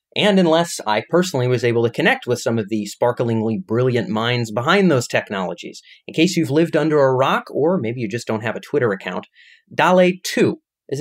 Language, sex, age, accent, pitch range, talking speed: English, male, 30-49, American, 110-155 Hz, 195 wpm